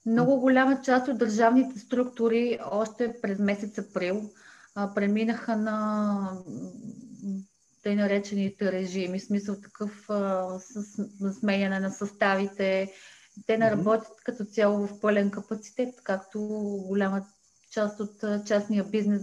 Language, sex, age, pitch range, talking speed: Bulgarian, female, 30-49, 200-245 Hz, 115 wpm